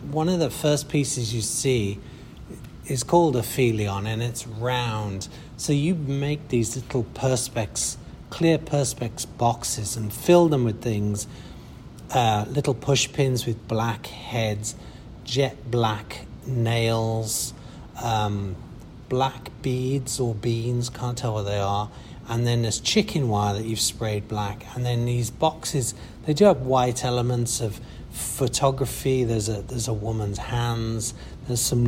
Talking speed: 145 wpm